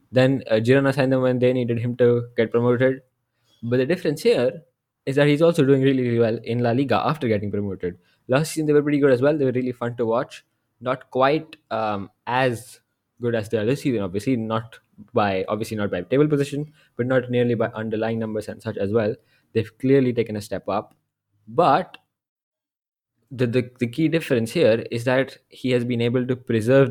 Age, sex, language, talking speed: 20-39, male, English, 205 wpm